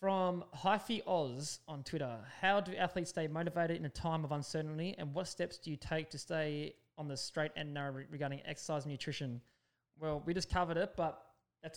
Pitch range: 140-160 Hz